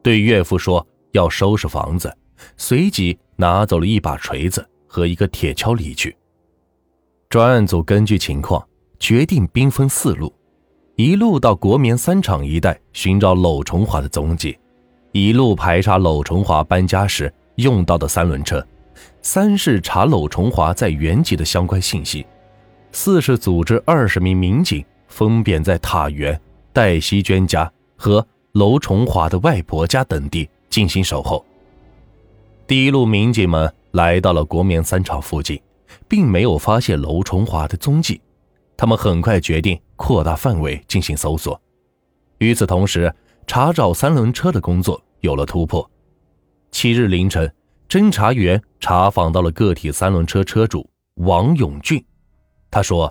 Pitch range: 80-110 Hz